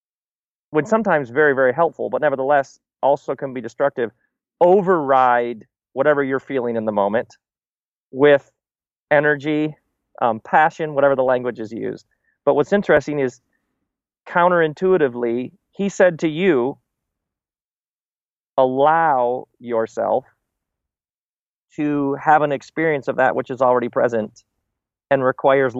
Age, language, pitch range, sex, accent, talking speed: 30-49, English, 125-155 Hz, male, American, 115 wpm